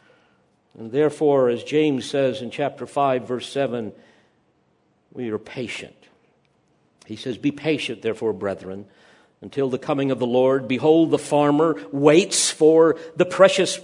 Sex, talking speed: male, 140 wpm